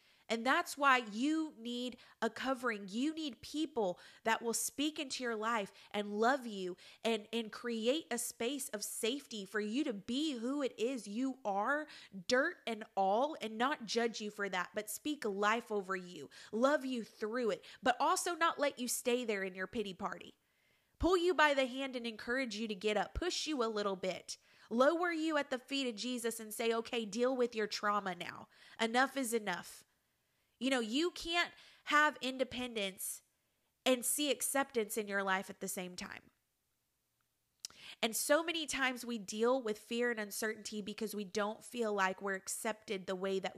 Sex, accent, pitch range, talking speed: female, American, 210-270 Hz, 185 wpm